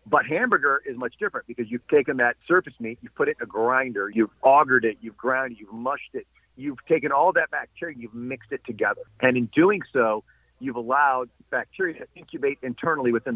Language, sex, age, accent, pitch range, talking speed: English, male, 50-69, American, 120-160 Hz, 210 wpm